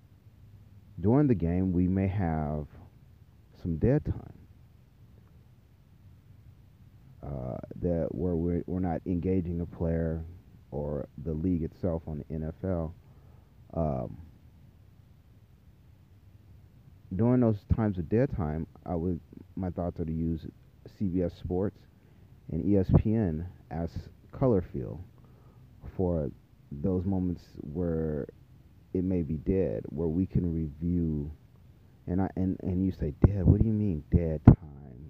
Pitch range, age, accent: 80-105 Hz, 30-49, American